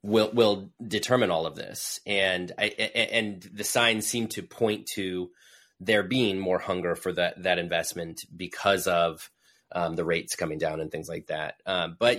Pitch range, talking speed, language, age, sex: 90-110 Hz, 180 wpm, English, 30-49, male